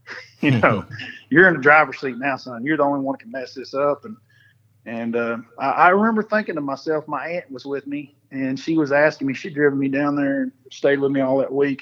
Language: English